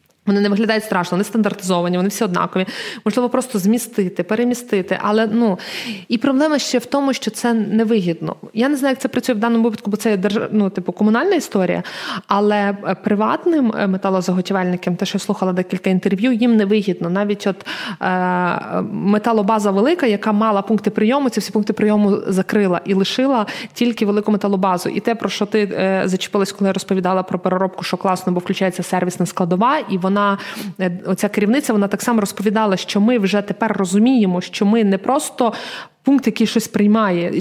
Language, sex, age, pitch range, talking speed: Ukrainian, female, 20-39, 190-225 Hz, 175 wpm